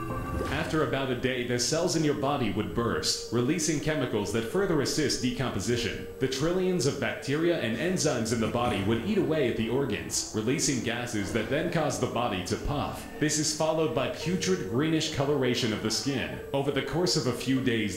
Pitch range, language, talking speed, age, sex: 120-160 Hz, English, 195 wpm, 30-49, male